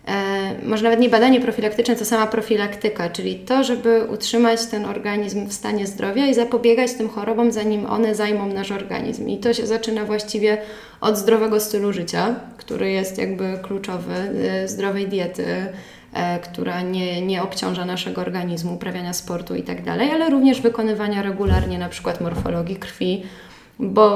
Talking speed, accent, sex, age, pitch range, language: 160 wpm, native, female, 20-39, 195-230 Hz, Polish